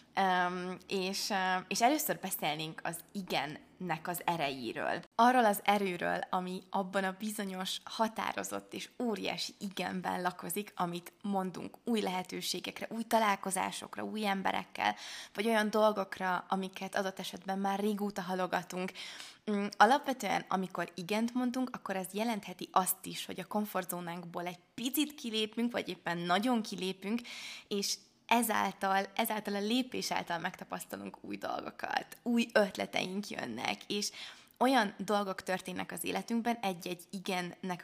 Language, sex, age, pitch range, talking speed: Hungarian, female, 20-39, 185-215 Hz, 125 wpm